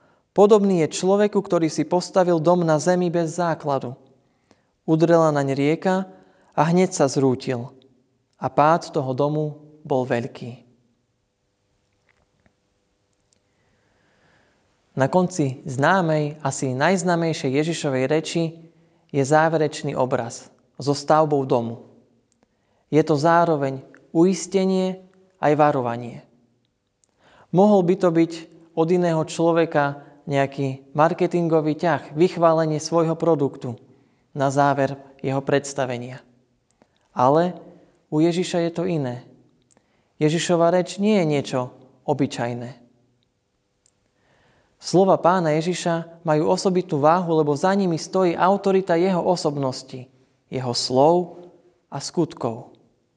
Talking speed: 100 wpm